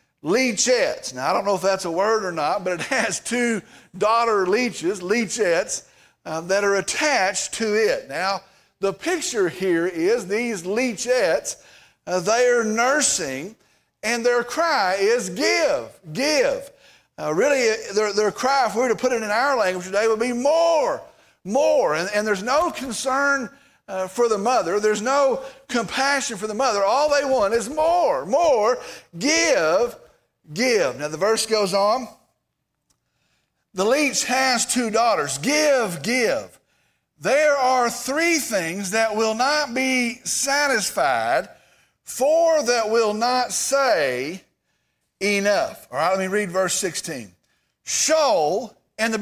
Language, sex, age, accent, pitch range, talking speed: English, male, 50-69, American, 210-280 Hz, 145 wpm